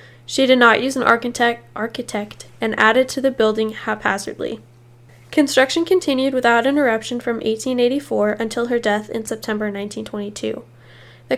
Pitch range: 205-245 Hz